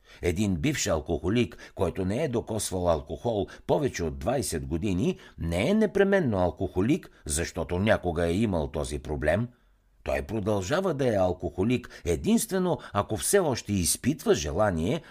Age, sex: 60-79, male